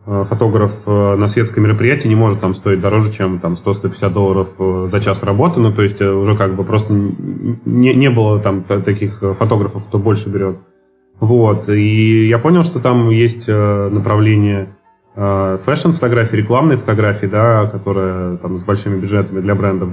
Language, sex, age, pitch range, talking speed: Russian, male, 20-39, 100-115 Hz, 155 wpm